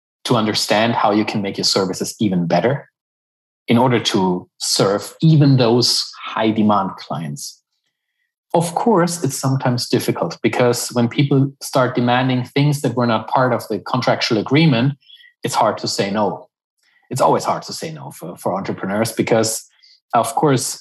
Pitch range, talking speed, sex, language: 105-135 Hz, 155 wpm, male, English